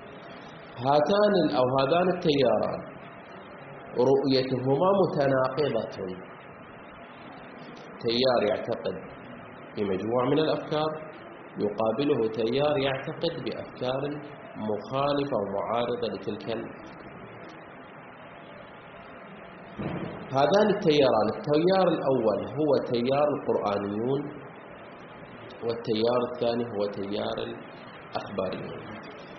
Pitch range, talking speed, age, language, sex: 120-155 Hz, 65 wpm, 40-59, Arabic, male